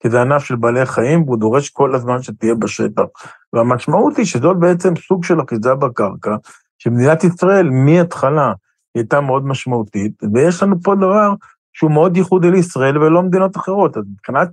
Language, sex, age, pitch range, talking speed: Hebrew, male, 50-69, 115-160 Hz, 170 wpm